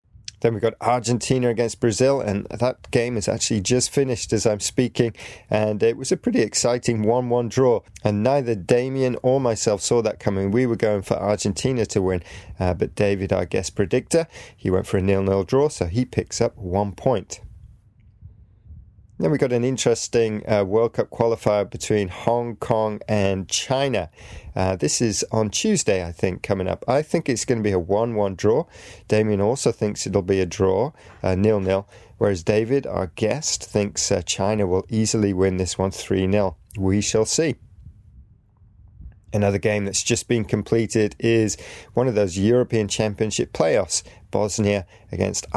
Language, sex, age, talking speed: English, male, 30-49, 170 wpm